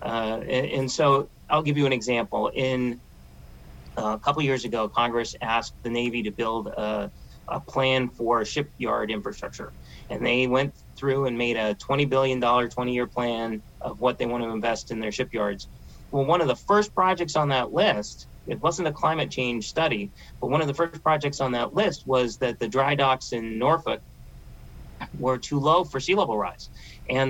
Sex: male